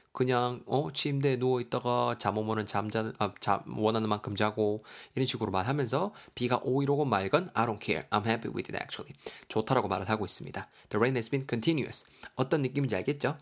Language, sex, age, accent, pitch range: Korean, male, 20-39, native, 105-140 Hz